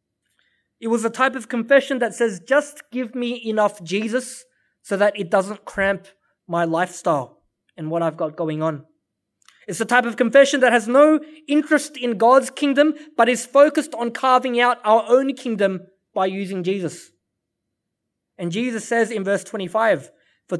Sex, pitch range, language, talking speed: male, 190-260 Hz, English, 165 wpm